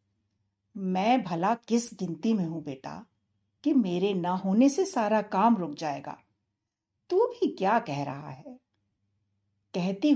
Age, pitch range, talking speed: 60-79, 155-250 Hz, 135 wpm